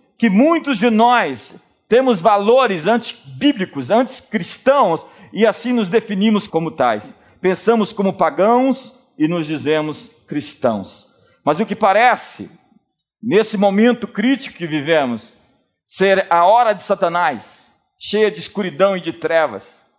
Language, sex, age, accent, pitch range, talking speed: Portuguese, male, 50-69, Brazilian, 160-220 Hz, 125 wpm